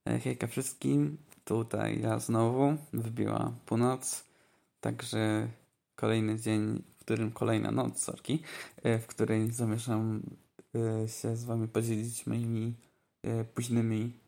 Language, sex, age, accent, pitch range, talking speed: Polish, male, 20-39, native, 110-125 Hz, 100 wpm